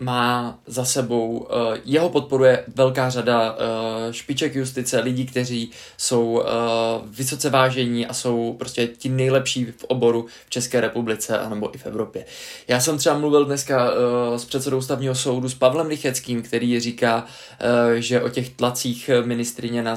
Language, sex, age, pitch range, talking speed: Czech, male, 20-39, 120-140 Hz, 140 wpm